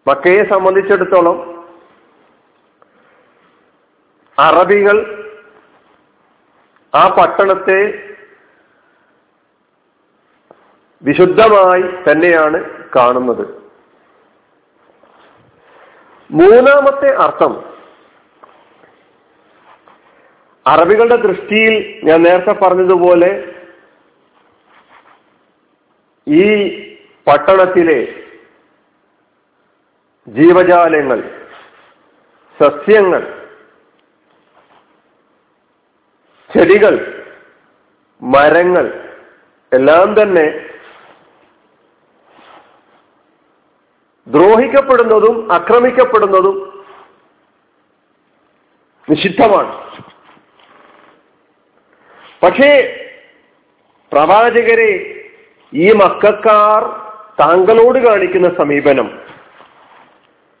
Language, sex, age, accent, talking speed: Malayalam, male, 50-69, native, 35 wpm